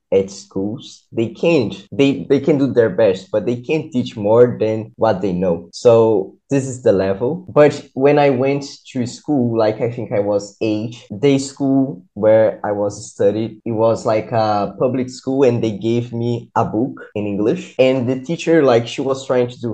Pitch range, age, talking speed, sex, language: 110-135 Hz, 20-39, 200 wpm, male, English